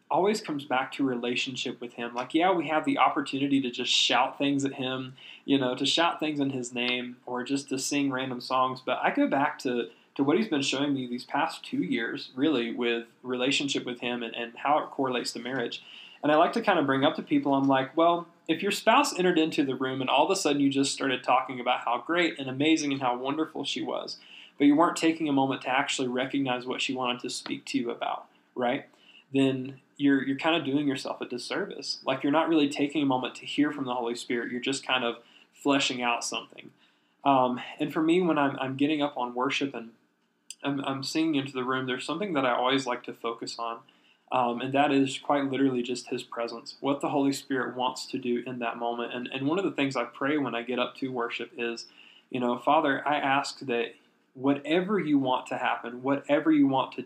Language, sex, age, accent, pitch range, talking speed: English, male, 20-39, American, 125-145 Hz, 235 wpm